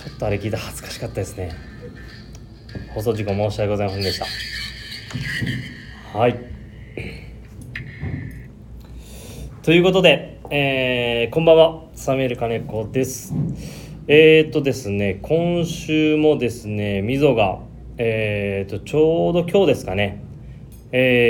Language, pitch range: Japanese, 105-130 Hz